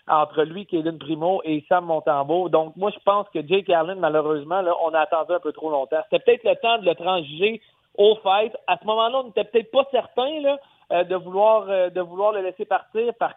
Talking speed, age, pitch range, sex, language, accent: 225 wpm, 40-59, 155-195 Hz, male, French, Canadian